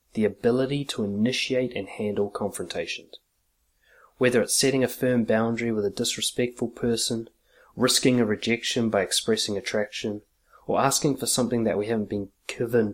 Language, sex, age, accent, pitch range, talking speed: English, male, 30-49, Australian, 110-130 Hz, 150 wpm